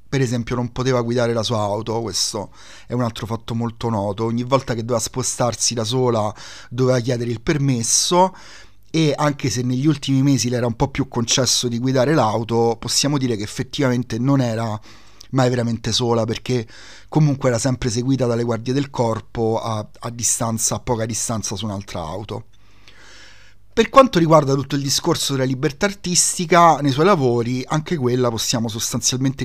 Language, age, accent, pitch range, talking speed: Italian, 30-49, native, 115-135 Hz, 165 wpm